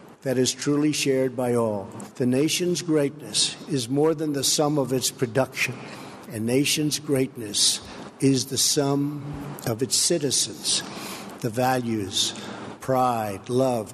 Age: 60-79